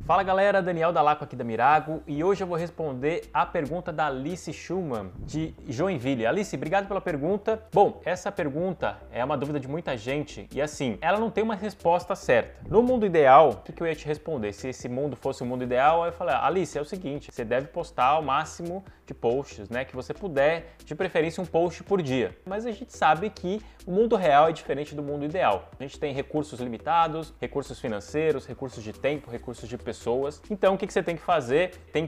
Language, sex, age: Portuguese, male, 20-39